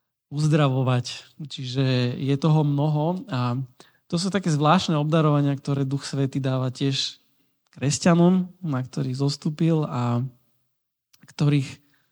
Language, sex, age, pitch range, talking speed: Slovak, male, 20-39, 125-150 Hz, 110 wpm